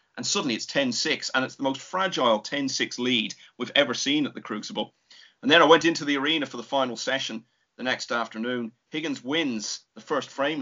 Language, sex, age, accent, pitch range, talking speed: English, male, 30-49, British, 115-185 Hz, 205 wpm